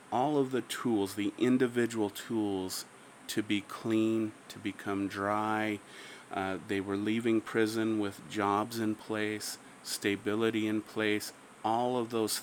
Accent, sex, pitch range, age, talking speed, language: American, male, 105-125 Hz, 30-49, 135 wpm, English